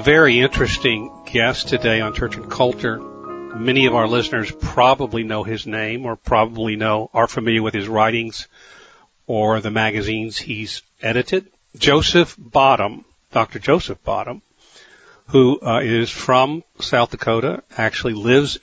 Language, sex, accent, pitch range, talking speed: English, male, American, 110-125 Hz, 135 wpm